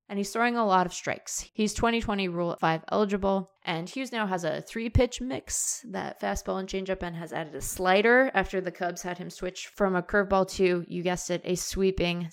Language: English